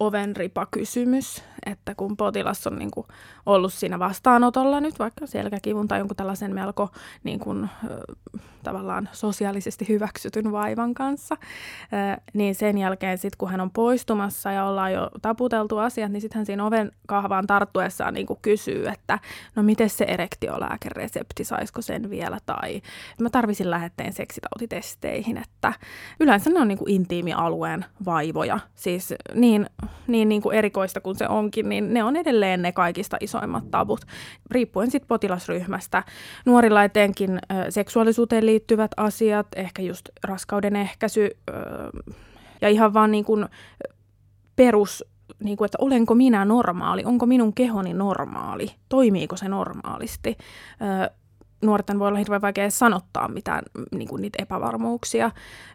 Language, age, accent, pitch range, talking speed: Finnish, 20-39, native, 195-225 Hz, 135 wpm